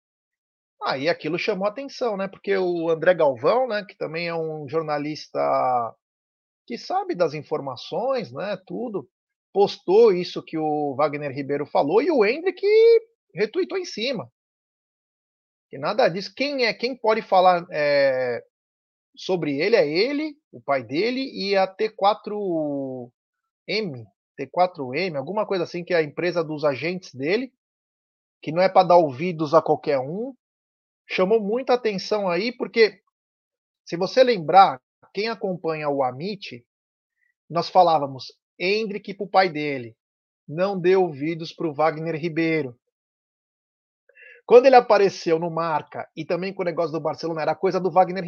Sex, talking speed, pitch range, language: male, 145 wpm, 155-230 Hz, Portuguese